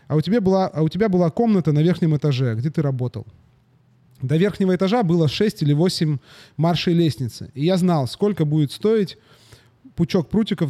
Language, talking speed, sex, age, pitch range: Russian, 165 wpm, male, 30-49, 135-180 Hz